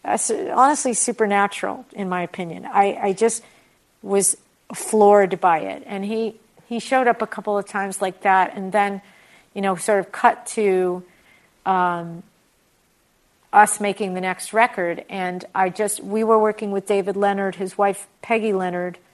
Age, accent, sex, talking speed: 50-69, American, female, 160 wpm